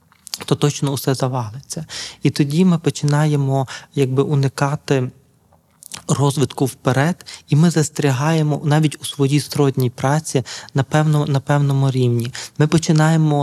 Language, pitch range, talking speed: Ukrainian, 130-145 Hz, 120 wpm